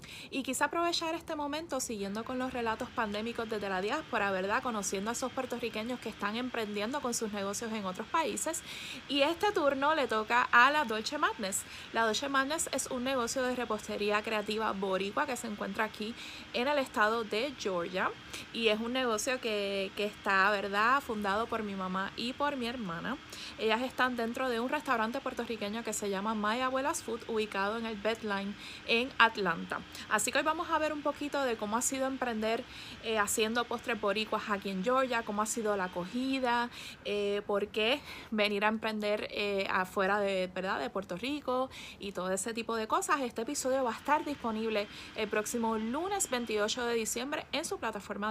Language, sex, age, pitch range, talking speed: Spanish, female, 20-39, 210-260 Hz, 185 wpm